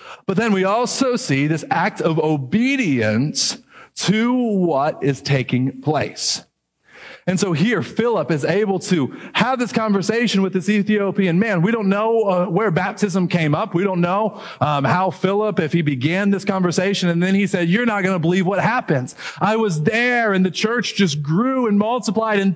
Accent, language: American, English